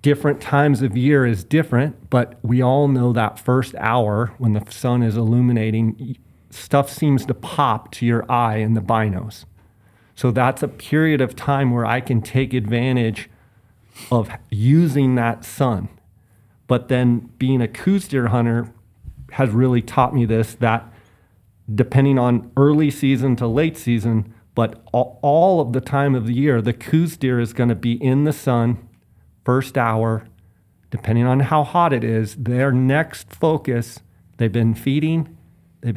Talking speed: 160 wpm